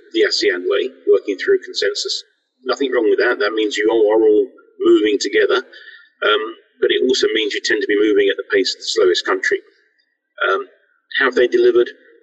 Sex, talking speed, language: male, 190 wpm, English